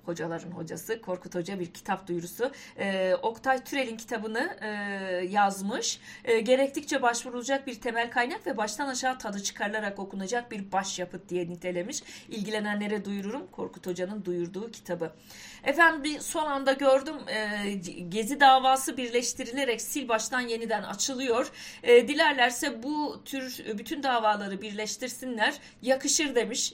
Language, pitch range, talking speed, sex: Turkish, 190-265 Hz, 125 wpm, female